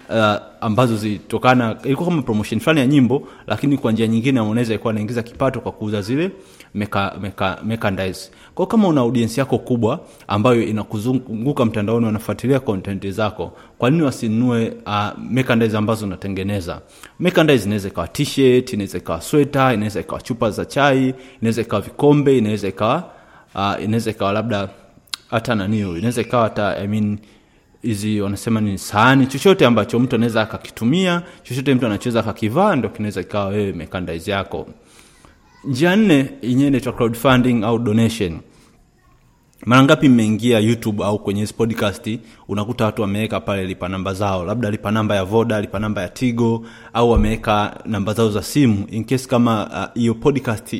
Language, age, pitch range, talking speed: Swahili, 30-49, 105-125 Hz, 155 wpm